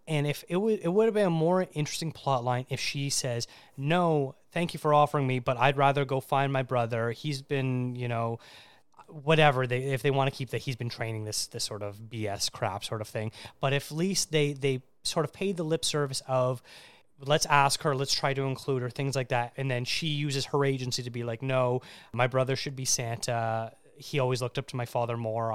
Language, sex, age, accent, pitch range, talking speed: English, male, 30-49, American, 125-155 Hz, 235 wpm